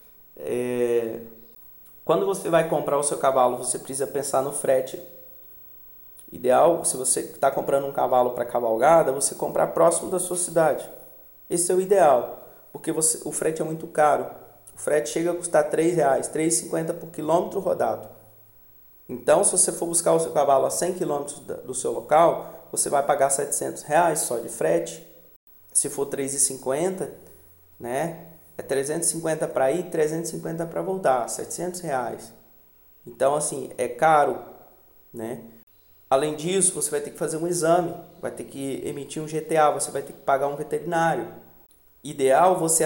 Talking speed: 160 wpm